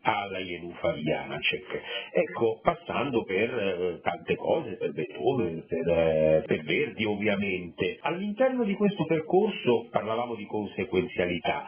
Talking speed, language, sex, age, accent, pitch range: 120 wpm, Italian, male, 50-69, native, 100-140 Hz